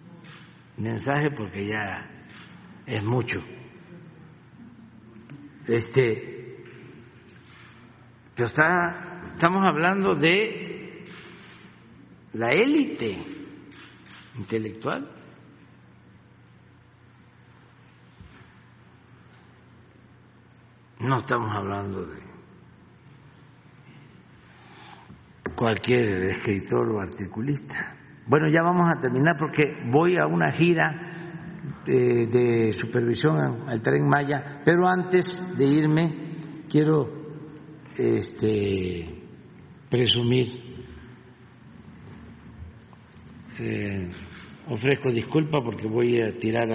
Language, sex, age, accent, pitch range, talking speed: Spanish, male, 60-79, Mexican, 110-155 Hz, 65 wpm